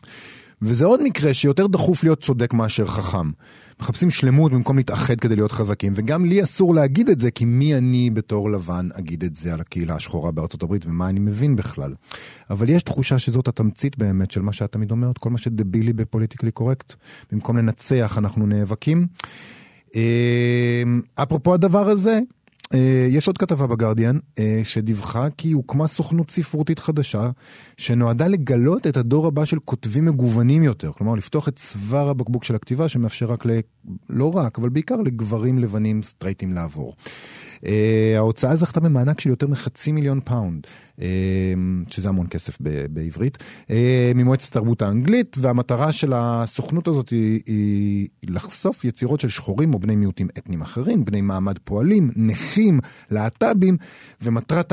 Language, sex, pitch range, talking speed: Hebrew, male, 105-145 Hz, 150 wpm